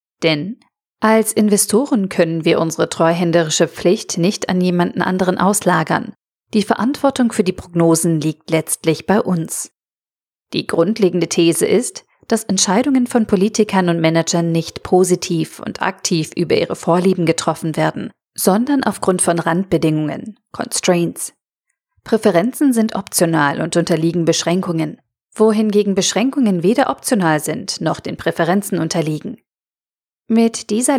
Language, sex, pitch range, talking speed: German, female, 170-220 Hz, 120 wpm